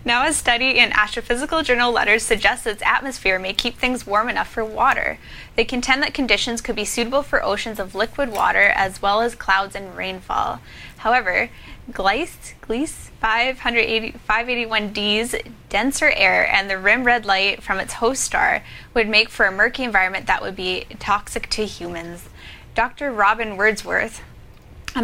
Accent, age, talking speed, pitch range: American, 10-29, 160 wpm, 200-245 Hz